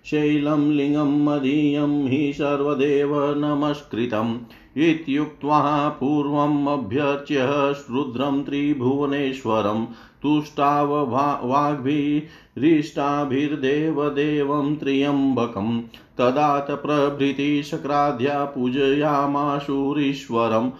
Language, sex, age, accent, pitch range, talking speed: Hindi, male, 50-69, native, 135-155 Hz, 45 wpm